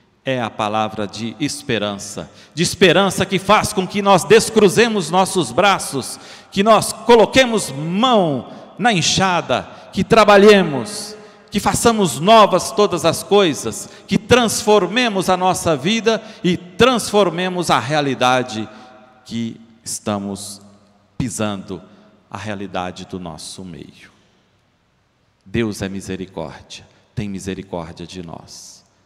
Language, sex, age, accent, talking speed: Portuguese, male, 50-69, Brazilian, 110 wpm